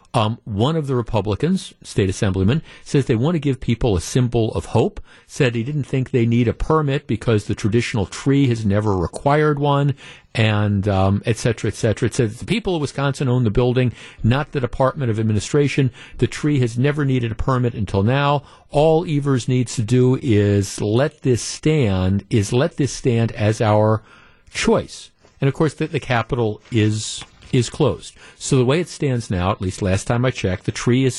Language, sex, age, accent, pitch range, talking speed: English, male, 50-69, American, 110-140 Hz, 195 wpm